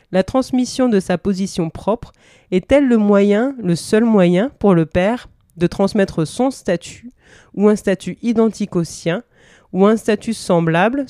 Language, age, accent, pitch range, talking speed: French, 30-49, French, 175-230 Hz, 155 wpm